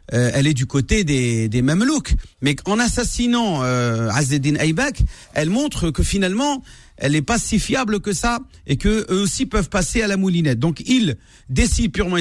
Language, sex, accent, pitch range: French, male, French, 135-190 Hz